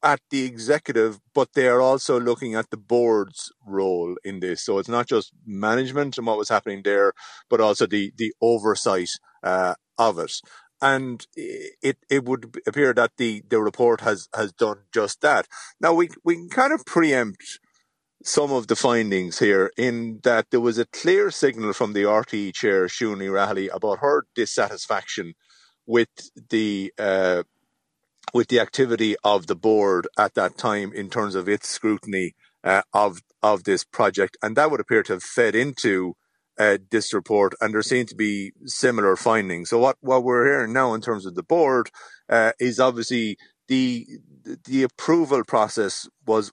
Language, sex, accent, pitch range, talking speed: English, male, Irish, 100-130 Hz, 175 wpm